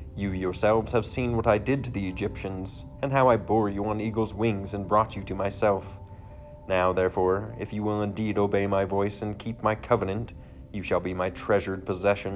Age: 30-49